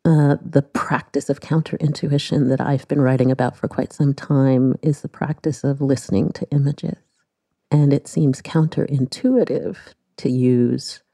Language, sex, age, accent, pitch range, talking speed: English, female, 40-59, American, 135-170 Hz, 145 wpm